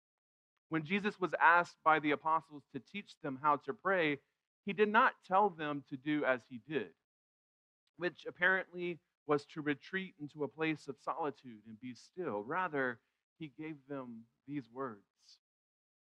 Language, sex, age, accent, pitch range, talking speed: English, male, 40-59, American, 140-185 Hz, 155 wpm